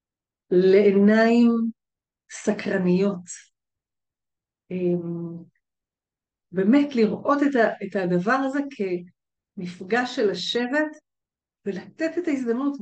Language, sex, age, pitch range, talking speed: Hebrew, female, 50-69, 180-245 Hz, 60 wpm